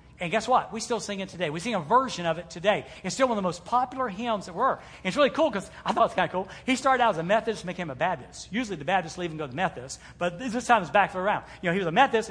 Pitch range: 190-275 Hz